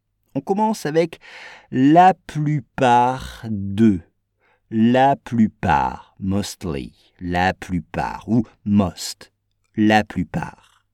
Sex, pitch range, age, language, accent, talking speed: male, 100-165 Hz, 50-69, English, French, 80 wpm